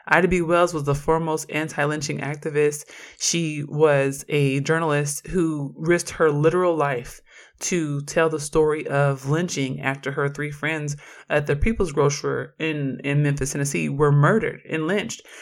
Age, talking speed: 20-39, 150 wpm